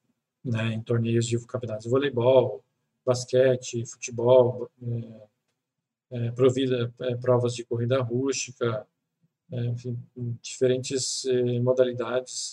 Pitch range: 120-130 Hz